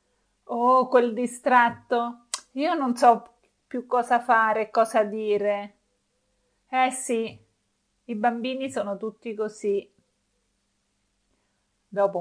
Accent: native